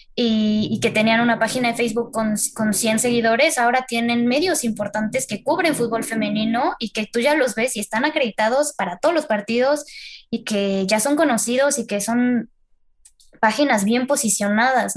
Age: 10-29